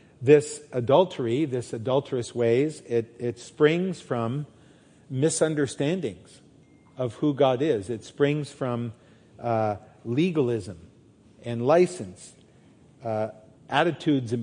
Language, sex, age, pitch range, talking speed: English, male, 50-69, 120-150 Hz, 100 wpm